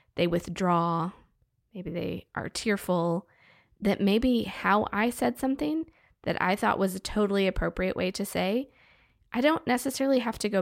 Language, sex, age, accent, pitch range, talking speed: English, female, 20-39, American, 185-250 Hz, 160 wpm